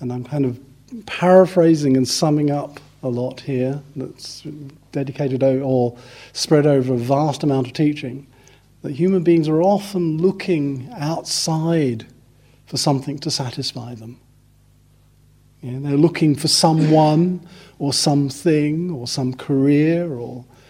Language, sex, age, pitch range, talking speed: English, male, 50-69, 125-145 Hz, 125 wpm